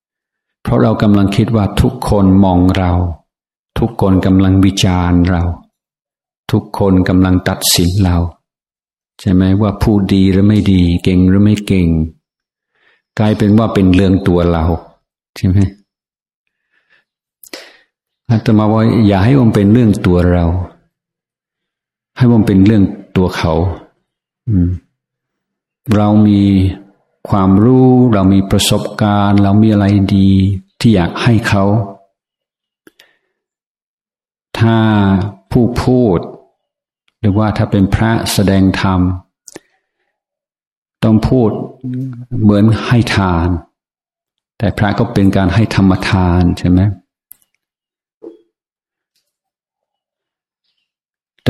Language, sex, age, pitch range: Thai, male, 60-79, 95-105 Hz